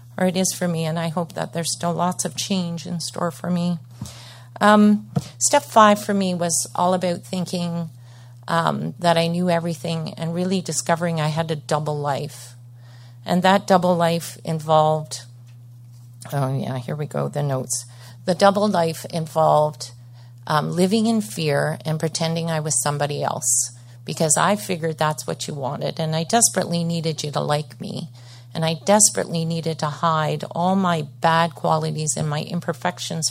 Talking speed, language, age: 170 wpm, English, 40-59